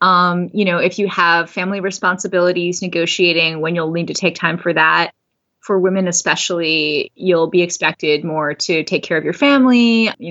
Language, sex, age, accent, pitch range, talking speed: English, female, 20-39, American, 165-195 Hz, 180 wpm